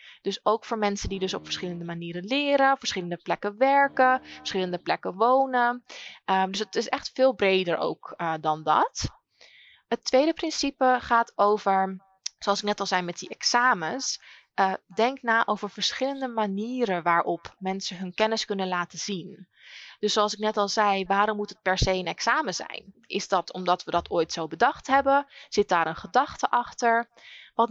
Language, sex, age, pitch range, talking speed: Dutch, female, 20-39, 185-240 Hz, 180 wpm